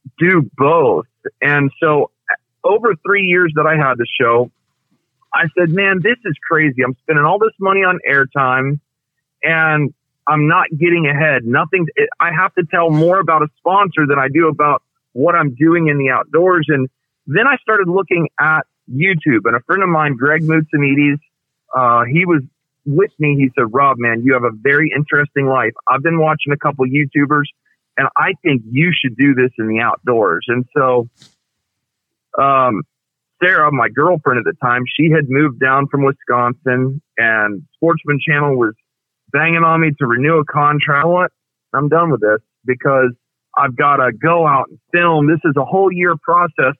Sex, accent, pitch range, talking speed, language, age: male, American, 135-170 Hz, 175 wpm, English, 40-59